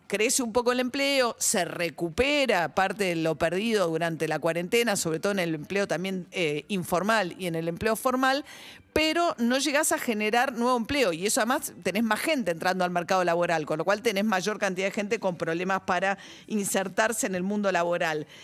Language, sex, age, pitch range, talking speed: Spanish, female, 40-59, 185-245 Hz, 195 wpm